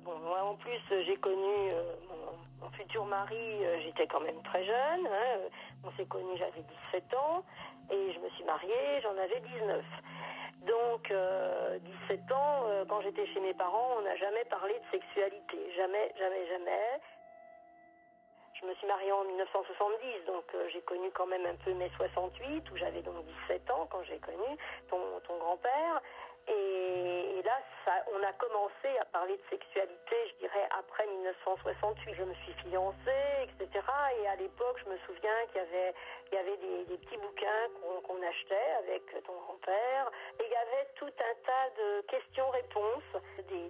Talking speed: 180 wpm